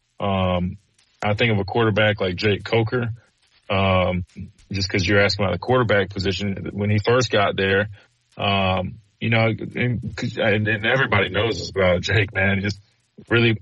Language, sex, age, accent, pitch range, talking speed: English, male, 30-49, American, 100-115 Hz, 155 wpm